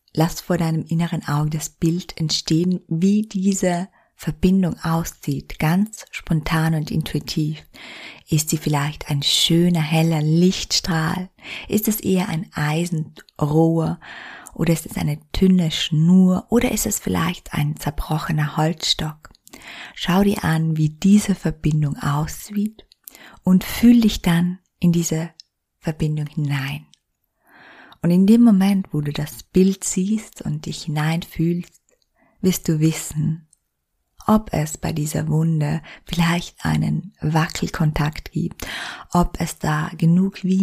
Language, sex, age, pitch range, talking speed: German, female, 20-39, 155-185 Hz, 125 wpm